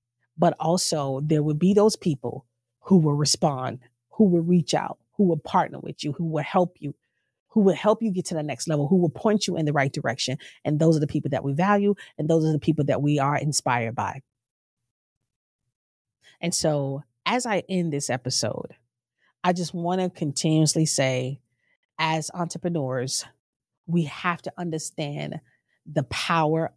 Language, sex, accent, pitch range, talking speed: English, female, American, 130-175 Hz, 175 wpm